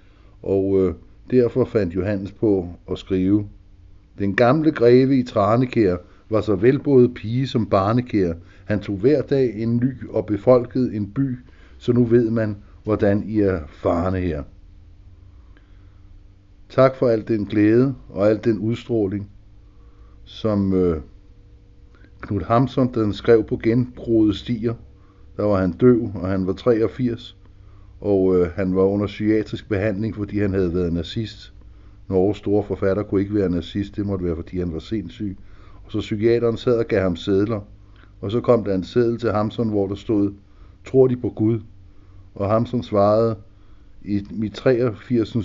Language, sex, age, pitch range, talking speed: Danish, male, 60-79, 95-115 Hz, 155 wpm